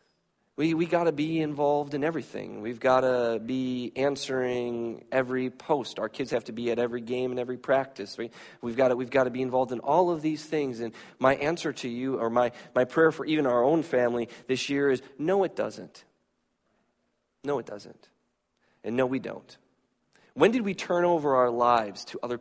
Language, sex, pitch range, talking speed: English, male, 120-155 Hz, 200 wpm